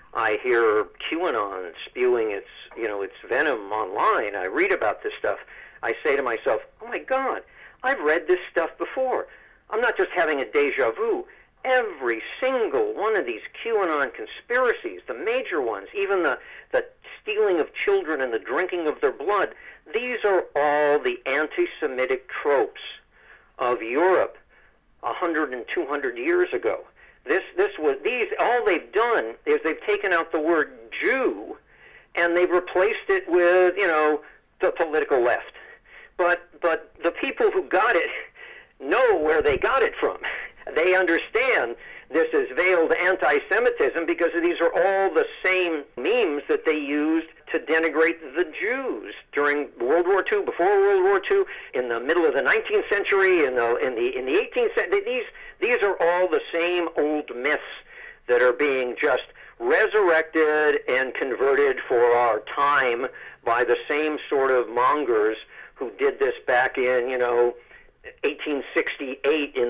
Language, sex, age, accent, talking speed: English, male, 50-69, American, 155 wpm